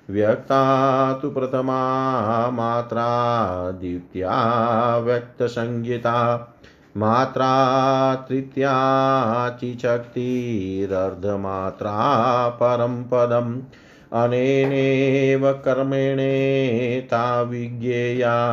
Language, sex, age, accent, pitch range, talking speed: Hindi, male, 40-59, native, 120-135 Hz, 45 wpm